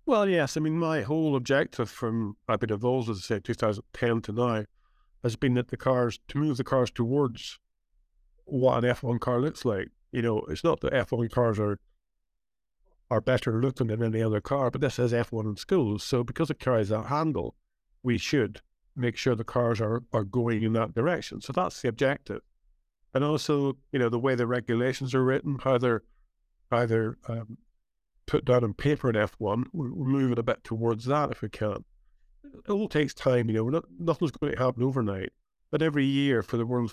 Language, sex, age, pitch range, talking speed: English, male, 50-69, 115-135 Hz, 200 wpm